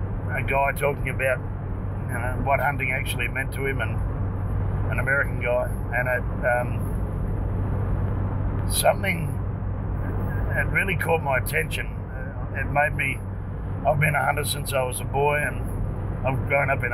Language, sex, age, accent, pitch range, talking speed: English, male, 50-69, Australian, 100-135 Hz, 150 wpm